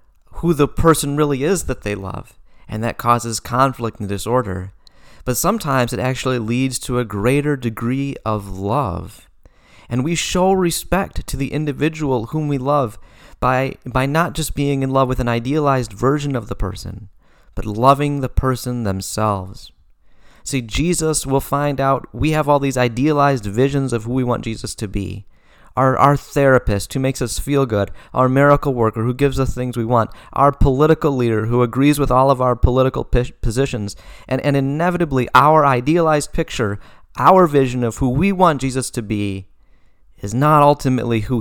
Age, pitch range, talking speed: 30-49, 110-140 Hz, 170 wpm